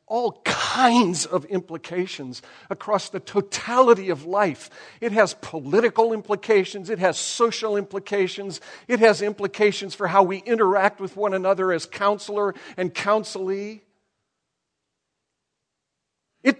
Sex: male